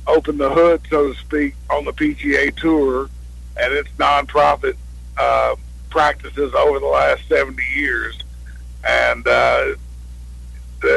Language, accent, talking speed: English, American, 120 wpm